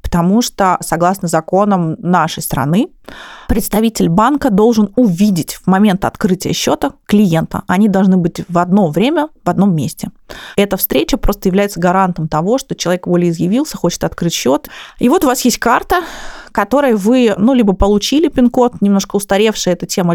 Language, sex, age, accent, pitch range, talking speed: Russian, female, 20-39, native, 175-220 Hz, 155 wpm